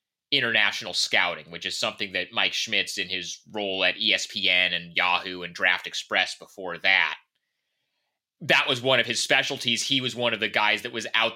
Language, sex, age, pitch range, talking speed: English, male, 30-49, 100-125 Hz, 185 wpm